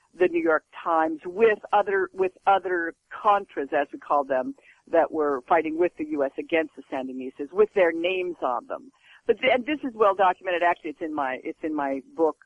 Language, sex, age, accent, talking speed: English, female, 50-69, American, 200 wpm